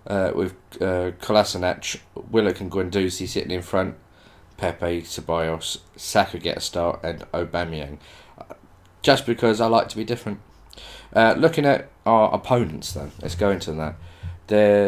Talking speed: 145 wpm